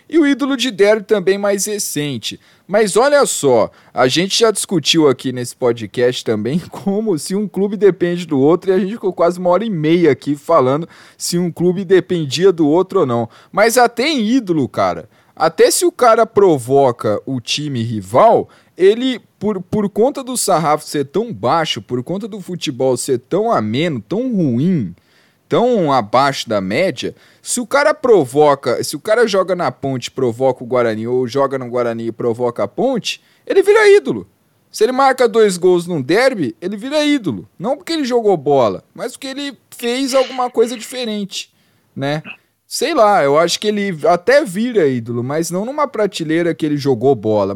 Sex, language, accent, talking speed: male, Portuguese, Brazilian, 180 wpm